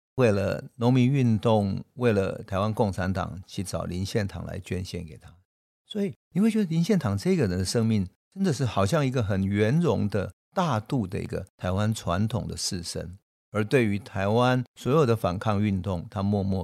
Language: Chinese